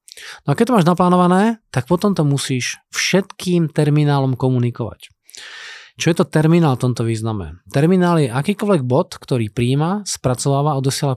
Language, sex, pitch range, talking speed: Slovak, male, 135-170 Hz, 150 wpm